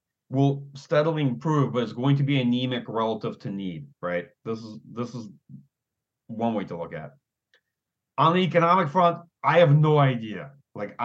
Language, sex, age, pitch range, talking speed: English, male, 30-49, 110-140 Hz, 175 wpm